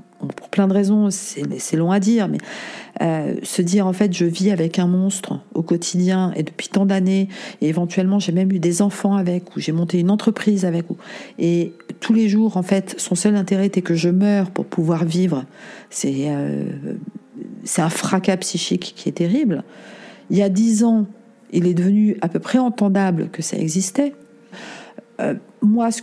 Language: French